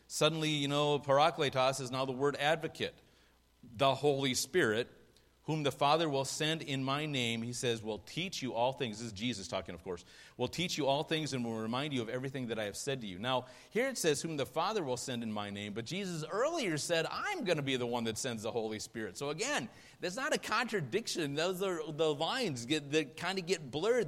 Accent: American